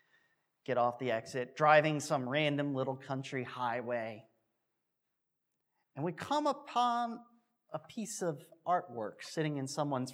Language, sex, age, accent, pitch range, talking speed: English, male, 30-49, American, 130-175 Hz, 125 wpm